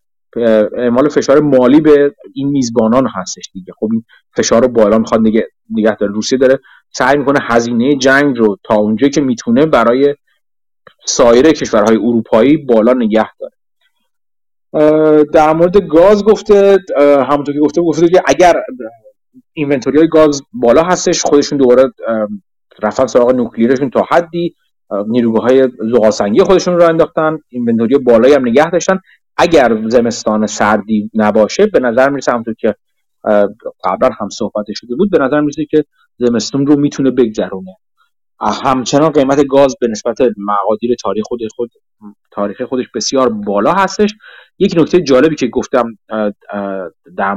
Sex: male